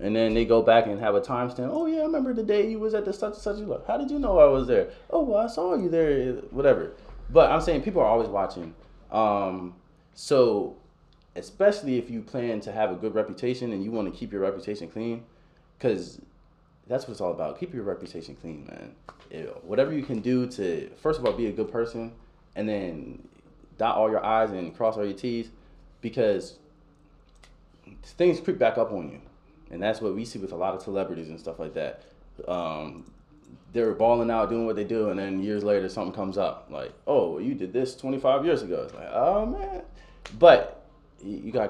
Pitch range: 100-160 Hz